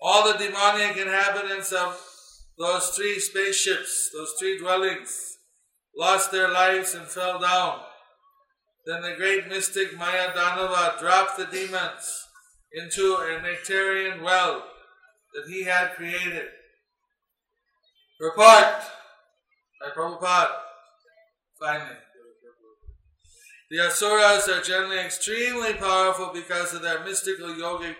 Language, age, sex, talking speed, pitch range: English, 50-69, male, 105 wpm, 180-195 Hz